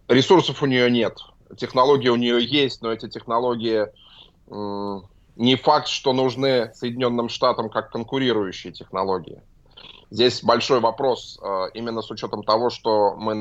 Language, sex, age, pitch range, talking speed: Russian, male, 20-39, 110-135 Hz, 140 wpm